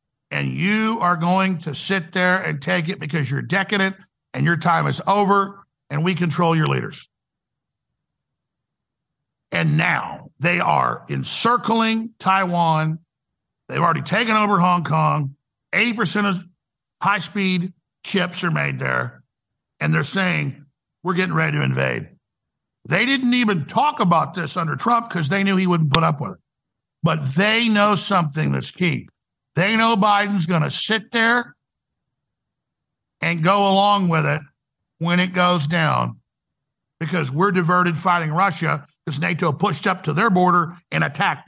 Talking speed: 150 wpm